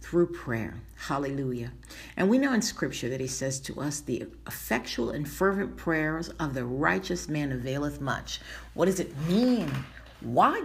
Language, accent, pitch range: English, American, 125-170 Hz